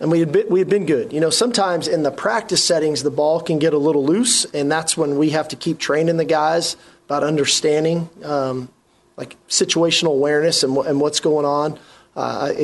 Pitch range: 140-165 Hz